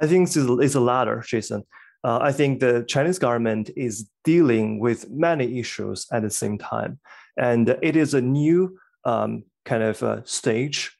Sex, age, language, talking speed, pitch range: male, 20-39, English, 170 wpm, 110-135 Hz